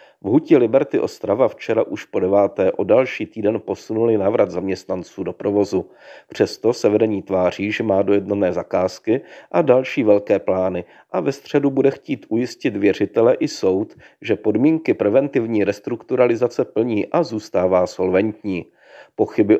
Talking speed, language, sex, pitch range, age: 140 wpm, Czech, male, 100-125 Hz, 40-59